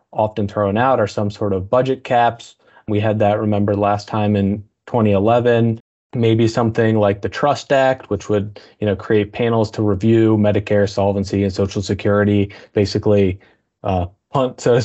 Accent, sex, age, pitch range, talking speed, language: American, male, 20-39, 105-120 Hz, 160 wpm, English